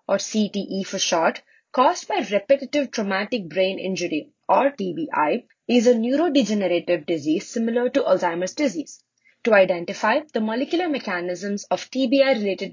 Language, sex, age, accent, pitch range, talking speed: English, female, 20-39, Indian, 185-275 Hz, 125 wpm